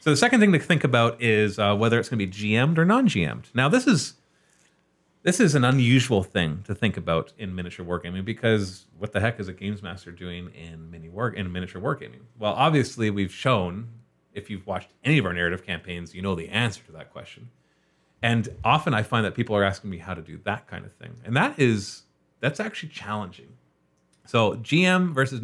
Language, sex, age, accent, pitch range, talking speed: English, male, 30-49, American, 95-125 Hz, 210 wpm